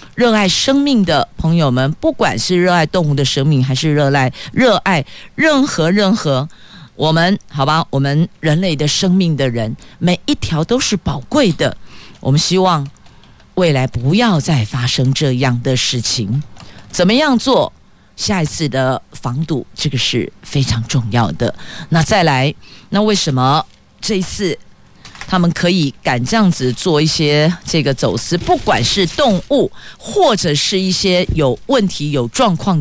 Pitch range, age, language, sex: 135-185 Hz, 50-69, Chinese, female